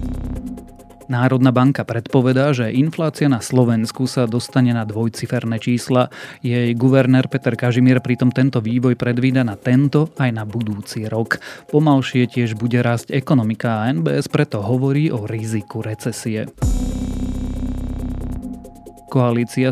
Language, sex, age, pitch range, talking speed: Slovak, male, 30-49, 110-130 Hz, 120 wpm